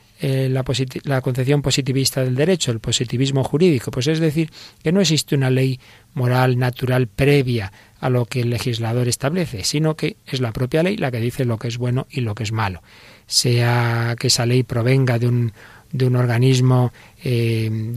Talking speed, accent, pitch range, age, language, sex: 185 wpm, Spanish, 120-145 Hz, 40-59, Spanish, male